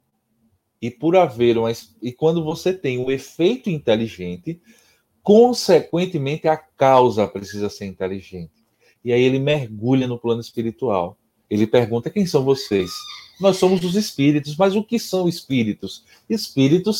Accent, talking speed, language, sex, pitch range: Brazilian, 125 wpm, Portuguese, male, 115-170 Hz